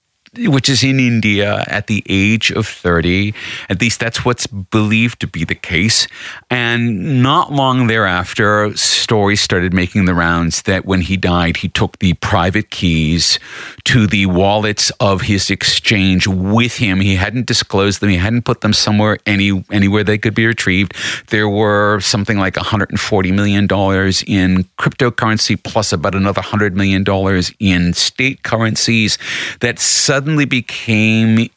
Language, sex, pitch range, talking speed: English, male, 95-115 Hz, 150 wpm